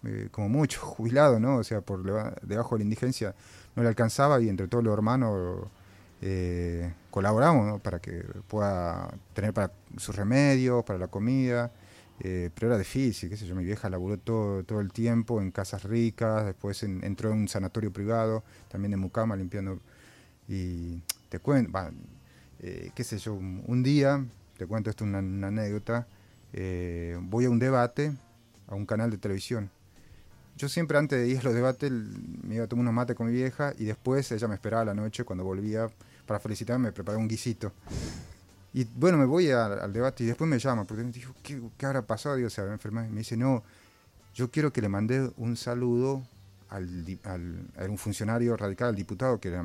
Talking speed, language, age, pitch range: 190 wpm, Spanish, 30-49, 100-120 Hz